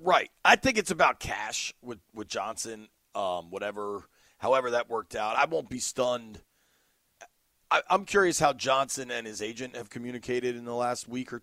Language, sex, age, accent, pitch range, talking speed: English, male, 40-59, American, 115-150 Hz, 180 wpm